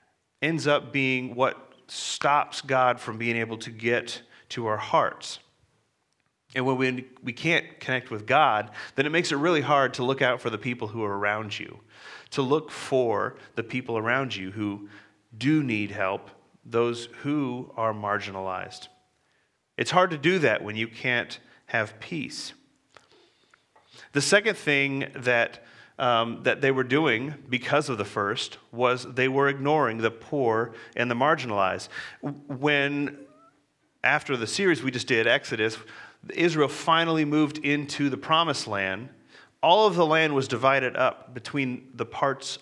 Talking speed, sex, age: 155 wpm, male, 40-59